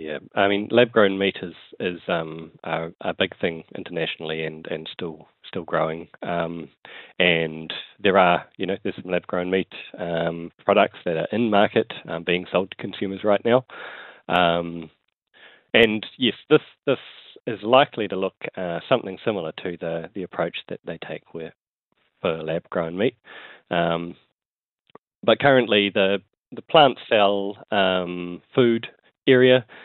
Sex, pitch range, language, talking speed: male, 85-105 Hz, English, 155 wpm